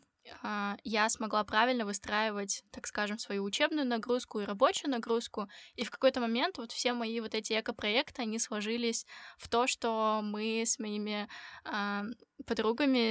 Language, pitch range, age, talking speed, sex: Russian, 210-245 Hz, 10-29, 150 wpm, female